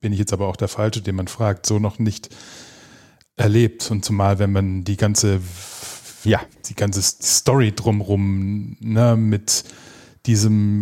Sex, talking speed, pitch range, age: male, 155 wpm, 105-115 Hz, 30-49